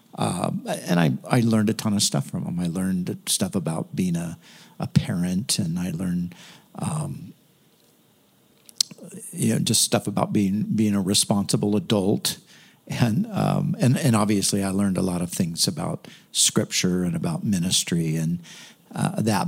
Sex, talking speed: male, 160 wpm